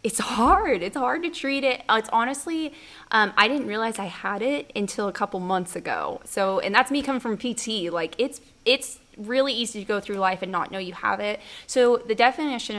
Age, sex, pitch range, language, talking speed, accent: 20-39, female, 190-225 Hz, English, 215 wpm, American